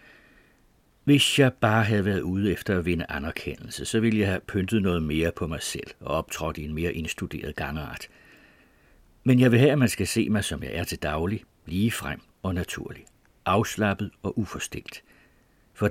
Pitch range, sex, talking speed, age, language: 85-115 Hz, male, 180 wpm, 60-79, Danish